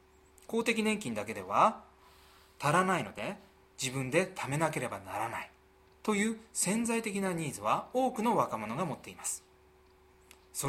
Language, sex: Japanese, male